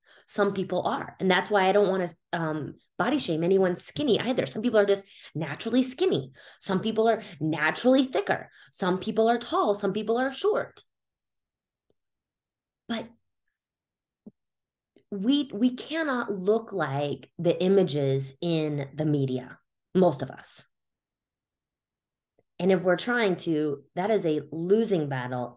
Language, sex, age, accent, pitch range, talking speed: English, female, 20-39, American, 150-205 Hz, 140 wpm